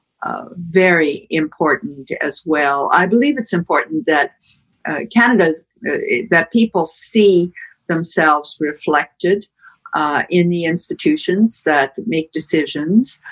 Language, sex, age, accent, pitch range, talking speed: English, female, 60-79, American, 160-215 Hz, 115 wpm